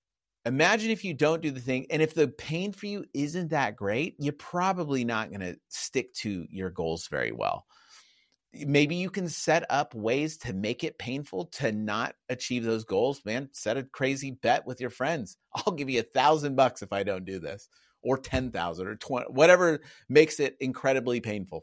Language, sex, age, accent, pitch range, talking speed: English, male, 30-49, American, 125-165 Hz, 195 wpm